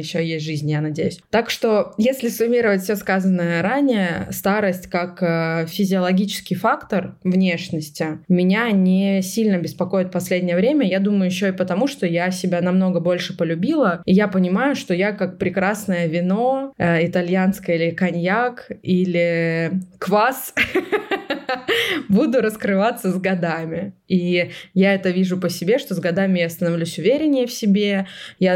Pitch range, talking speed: 170-200 Hz, 140 wpm